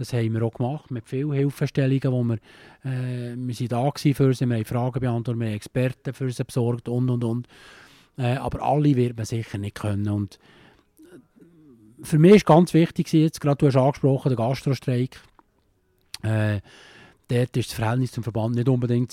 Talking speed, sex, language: 185 wpm, male, German